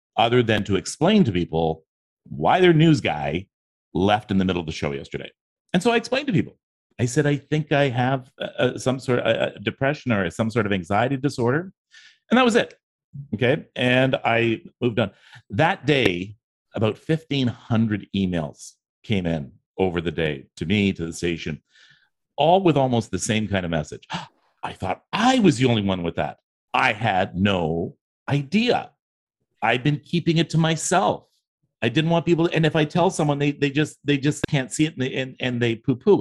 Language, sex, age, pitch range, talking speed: English, male, 40-59, 100-150 Hz, 190 wpm